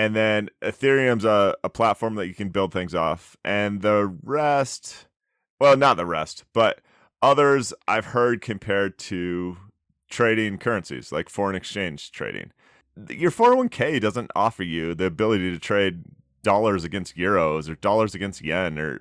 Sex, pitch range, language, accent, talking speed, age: male, 95-120 Hz, English, American, 150 wpm, 30-49